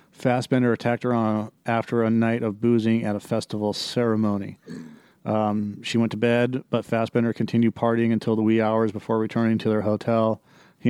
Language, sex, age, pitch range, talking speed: English, male, 40-59, 110-120 Hz, 170 wpm